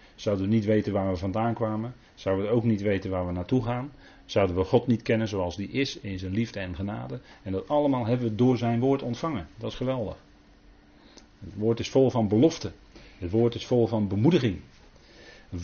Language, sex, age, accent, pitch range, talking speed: Dutch, male, 40-59, Dutch, 95-125 Hz, 210 wpm